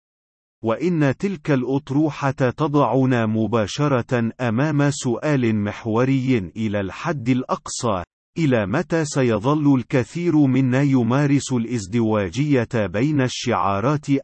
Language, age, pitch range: Arabic, 40-59, 115-145 Hz